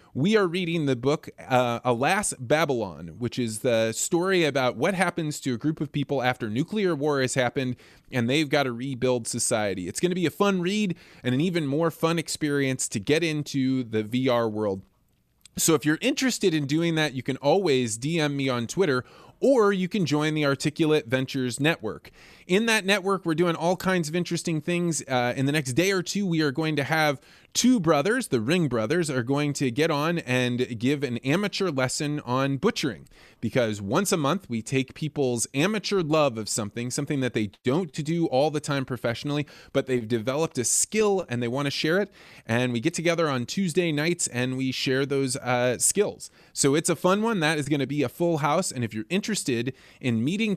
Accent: American